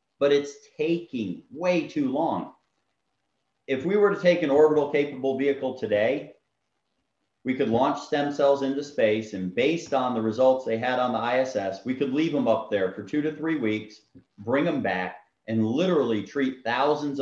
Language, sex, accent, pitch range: English, male, American, 110-140 Hz